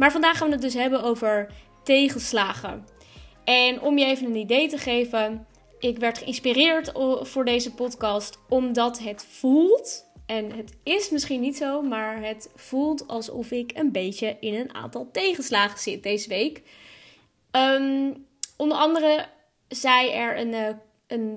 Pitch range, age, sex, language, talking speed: 225-275 Hz, 20-39, female, Dutch, 145 wpm